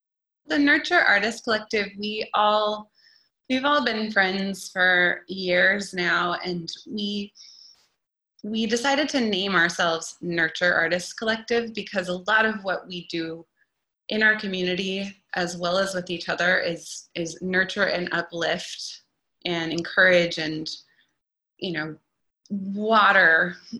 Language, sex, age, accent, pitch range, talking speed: English, female, 20-39, American, 170-215 Hz, 125 wpm